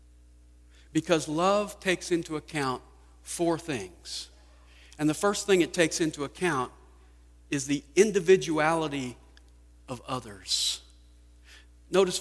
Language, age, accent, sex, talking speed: English, 50-69, American, male, 105 wpm